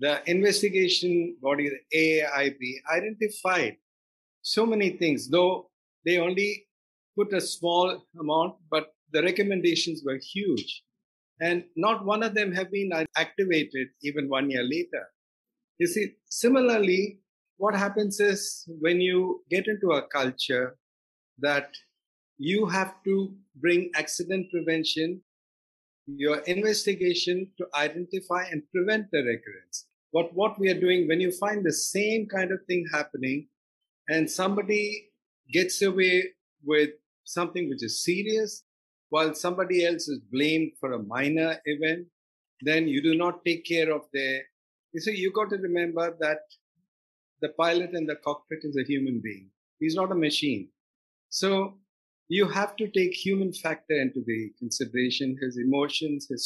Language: English